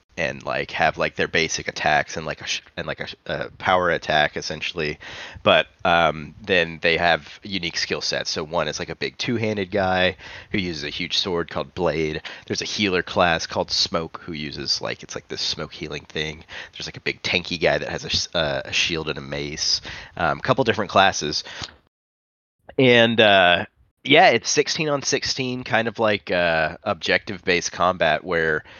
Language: English